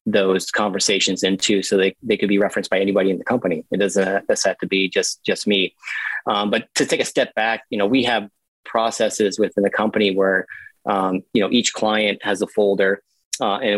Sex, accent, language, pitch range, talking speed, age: male, American, English, 95-105 Hz, 210 wpm, 30-49